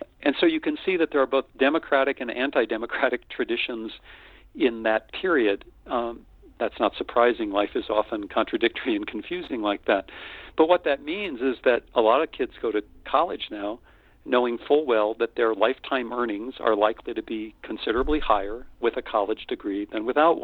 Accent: American